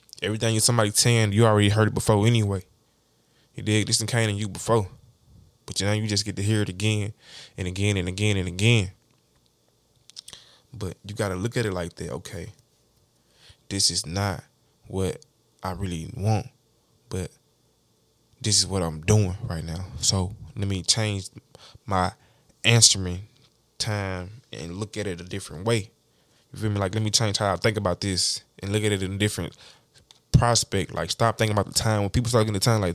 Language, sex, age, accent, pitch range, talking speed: English, male, 20-39, American, 95-115 Hz, 195 wpm